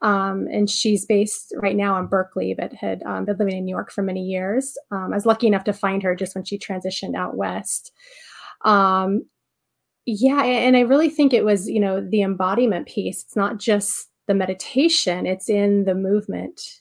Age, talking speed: 30-49, 195 wpm